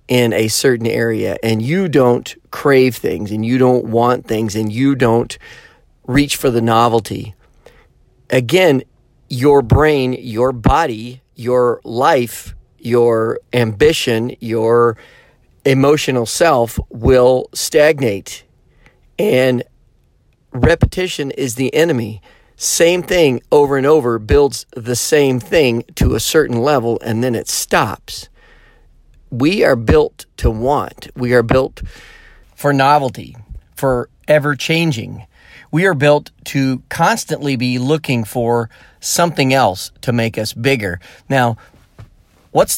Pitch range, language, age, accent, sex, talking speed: 115-140 Hz, English, 40-59, American, male, 120 wpm